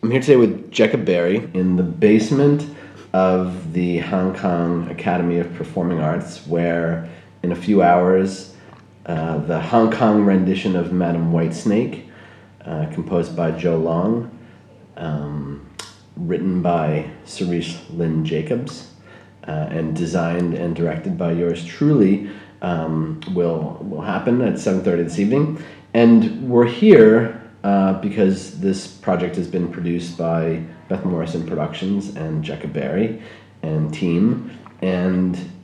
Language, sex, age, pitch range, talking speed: English, male, 30-49, 85-100 Hz, 130 wpm